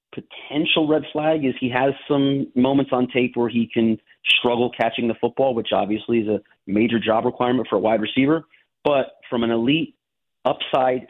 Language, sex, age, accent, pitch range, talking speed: English, male, 30-49, American, 115-135 Hz, 180 wpm